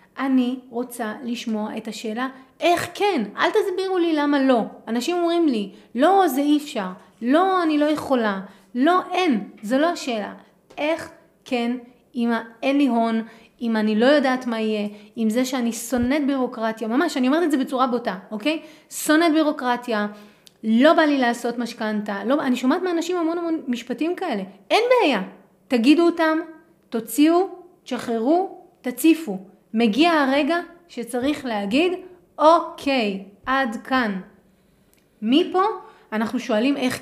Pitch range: 230-330 Hz